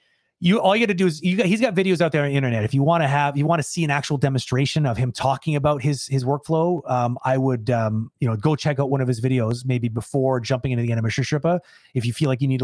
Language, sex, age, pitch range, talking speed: English, male, 30-49, 125-165 Hz, 290 wpm